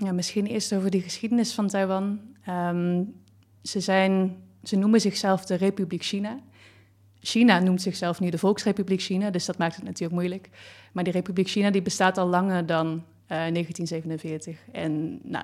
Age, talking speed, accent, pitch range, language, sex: 20-39, 160 wpm, Dutch, 170-190 Hz, Dutch, female